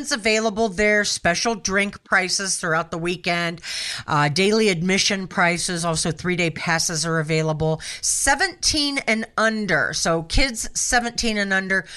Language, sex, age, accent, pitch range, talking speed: English, female, 50-69, American, 170-240 Hz, 125 wpm